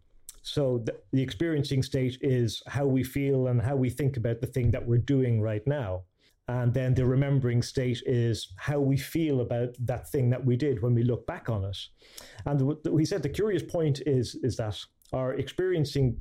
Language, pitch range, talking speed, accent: English, 115-140 Hz, 195 wpm, British